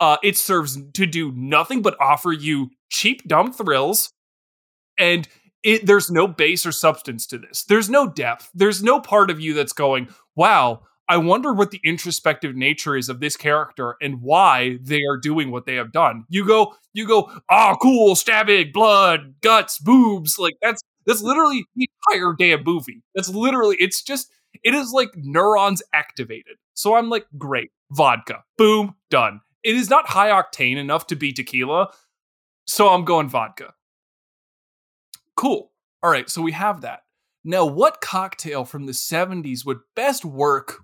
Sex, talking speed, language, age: male, 165 wpm, English, 20-39